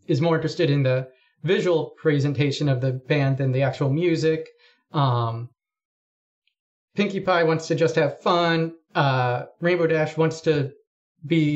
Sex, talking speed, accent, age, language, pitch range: male, 145 wpm, American, 30-49, English, 140-165 Hz